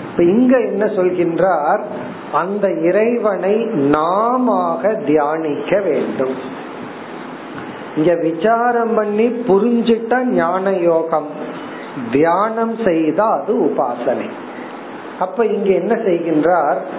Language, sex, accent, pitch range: Tamil, male, native, 175-225 Hz